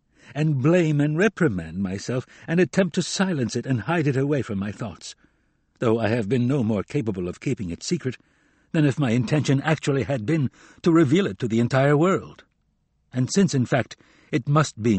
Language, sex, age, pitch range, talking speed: English, male, 60-79, 110-155 Hz, 195 wpm